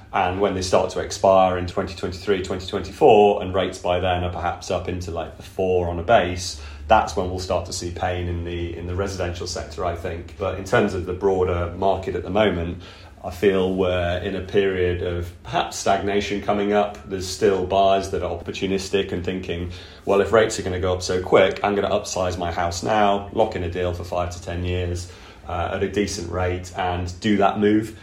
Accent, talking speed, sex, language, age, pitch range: British, 215 wpm, male, English, 30-49, 90-100 Hz